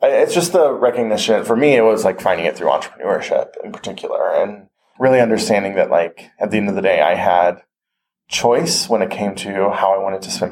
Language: English